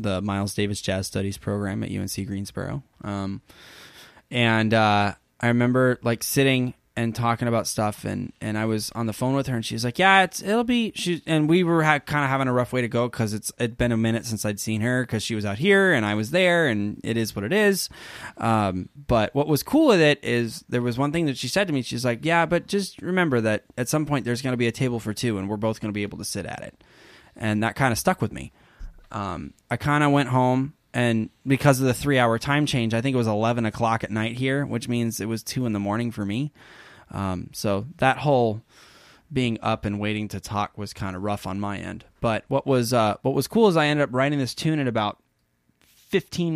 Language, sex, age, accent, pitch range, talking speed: English, male, 10-29, American, 105-140 Hz, 250 wpm